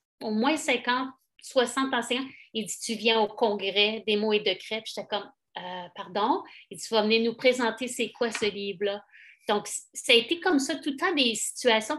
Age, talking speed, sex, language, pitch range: 30-49, 210 wpm, female, French, 210-255 Hz